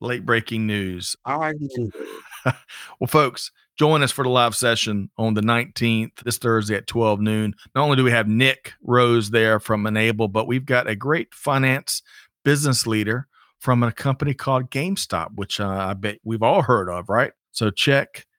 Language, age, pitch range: English, 40-59, 110-135 Hz